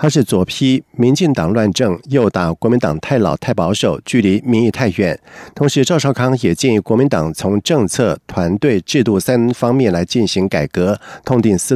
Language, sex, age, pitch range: Chinese, male, 50-69, 100-135 Hz